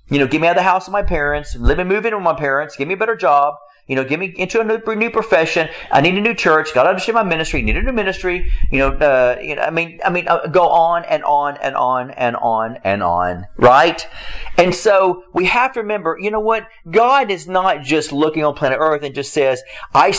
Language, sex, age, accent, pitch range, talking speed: English, male, 40-59, American, 150-210 Hz, 260 wpm